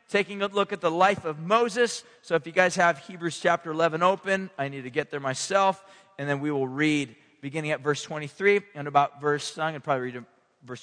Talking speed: 225 wpm